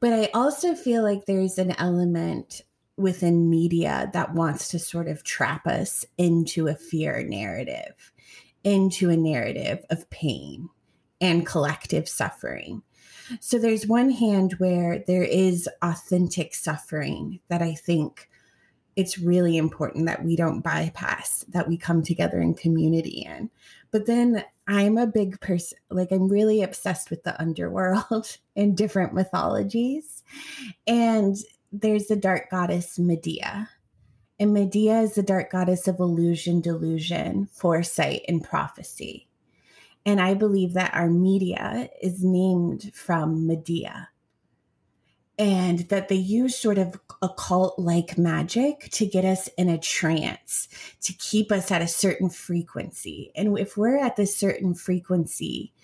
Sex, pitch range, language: female, 170-205 Hz, English